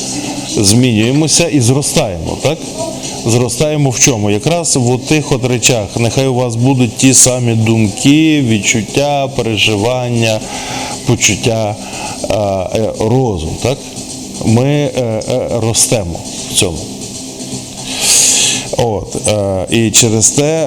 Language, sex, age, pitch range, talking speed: Ukrainian, male, 20-39, 110-130 Hz, 95 wpm